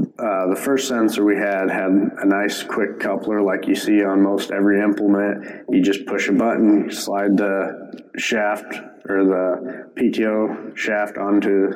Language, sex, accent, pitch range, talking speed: English, male, American, 95-105 Hz, 160 wpm